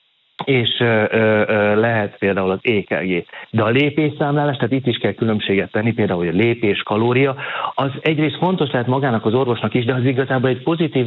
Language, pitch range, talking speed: Hungarian, 105-130 Hz, 175 wpm